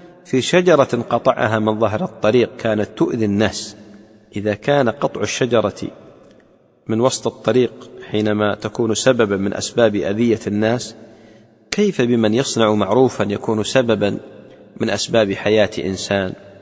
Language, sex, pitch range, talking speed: English, male, 105-125 Hz, 120 wpm